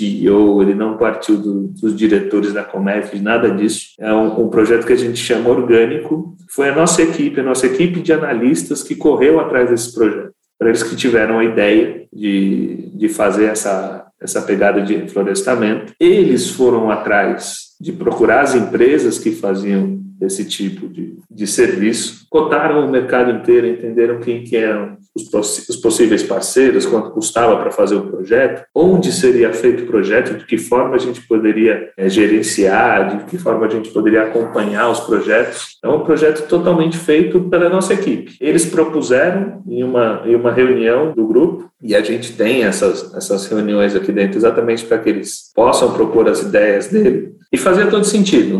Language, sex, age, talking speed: Portuguese, male, 40-59, 175 wpm